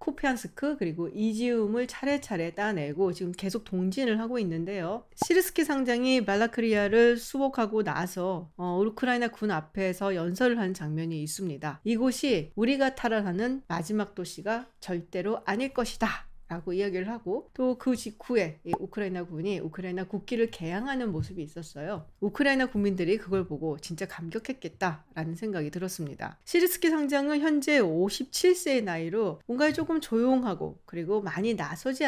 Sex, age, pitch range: female, 40-59, 180-250 Hz